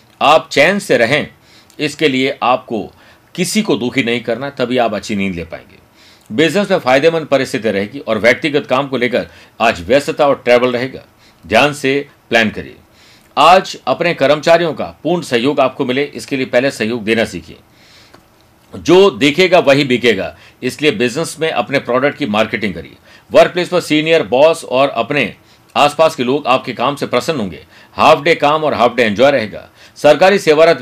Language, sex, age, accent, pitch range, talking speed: Hindi, male, 50-69, native, 120-155 Hz, 170 wpm